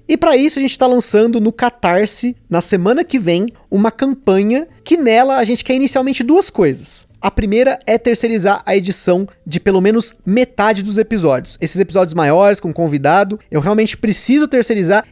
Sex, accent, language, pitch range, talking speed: male, Brazilian, Portuguese, 195-245 Hz, 175 wpm